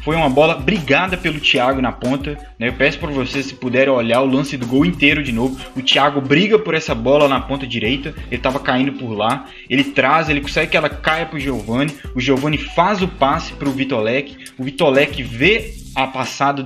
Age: 20-39